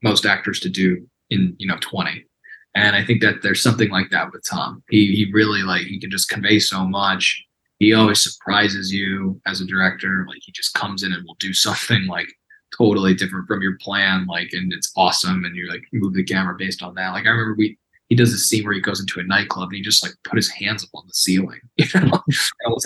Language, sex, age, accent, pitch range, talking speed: English, male, 20-39, American, 95-115 Hz, 235 wpm